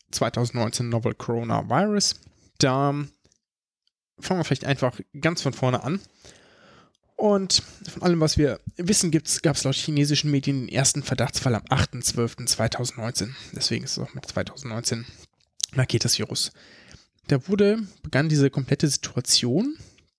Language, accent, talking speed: German, German, 130 wpm